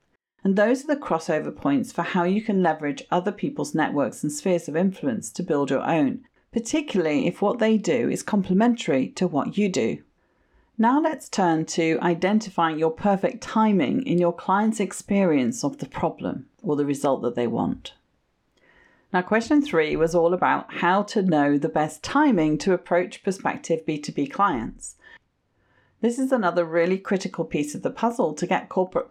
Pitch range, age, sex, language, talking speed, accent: 160-225 Hz, 40-59, female, English, 170 wpm, British